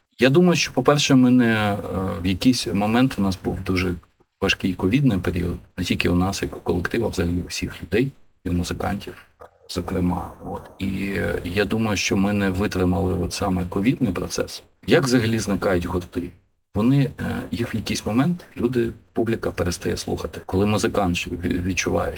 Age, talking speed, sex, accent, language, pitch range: 40-59, 160 wpm, male, native, Ukrainian, 90-115 Hz